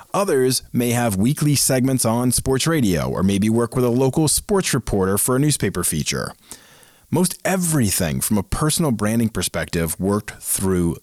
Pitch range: 95-130 Hz